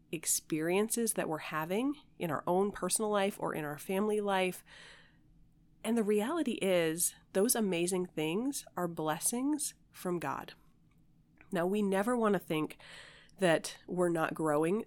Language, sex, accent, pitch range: English, female, American, 165-210 Hz